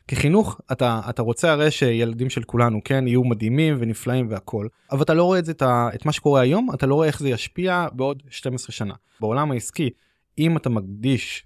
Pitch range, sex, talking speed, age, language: 115-150 Hz, male, 200 wpm, 20-39, Hebrew